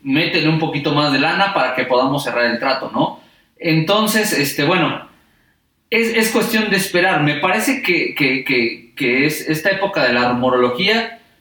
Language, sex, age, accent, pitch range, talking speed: Spanish, male, 40-59, Mexican, 130-170 Hz, 175 wpm